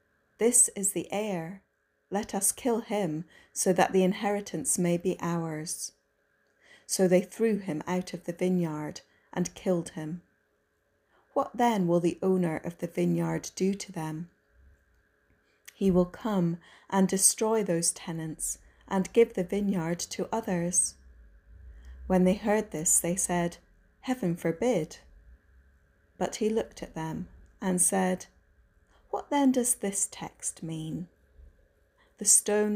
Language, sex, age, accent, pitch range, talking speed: English, female, 30-49, British, 165-200 Hz, 135 wpm